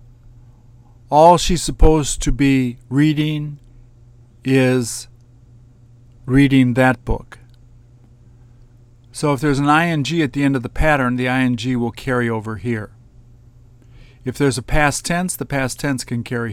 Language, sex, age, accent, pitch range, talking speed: English, male, 50-69, American, 120-135 Hz, 135 wpm